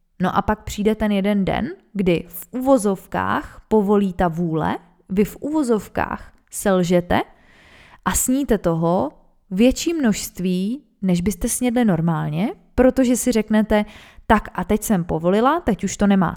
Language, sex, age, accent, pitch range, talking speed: Czech, female, 20-39, native, 185-235 Hz, 140 wpm